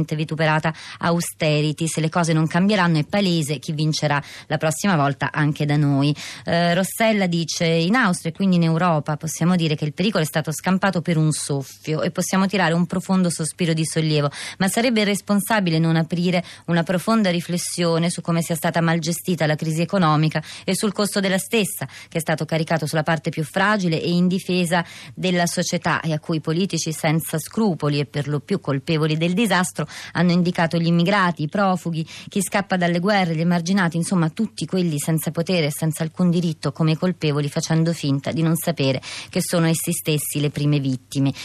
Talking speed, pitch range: 185 wpm, 155-180 Hz